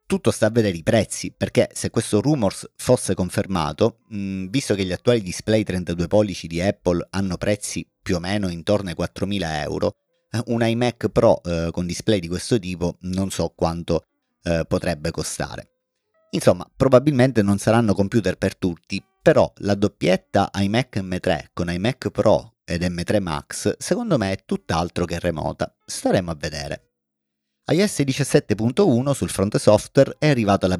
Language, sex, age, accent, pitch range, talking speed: Italian, male, 30-49, native, 85-115 Hz, 150 wpm